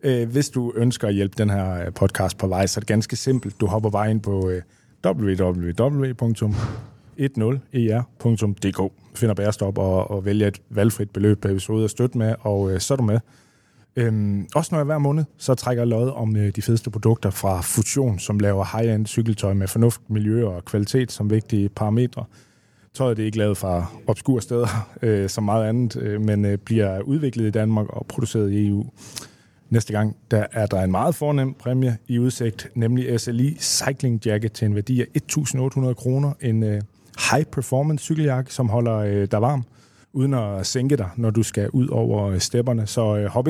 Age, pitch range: 30-49, 100-125 Hz